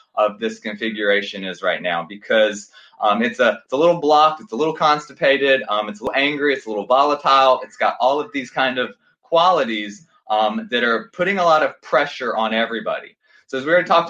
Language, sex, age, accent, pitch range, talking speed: English, male, 20-39, American, 115-165 Hz, 215 wpm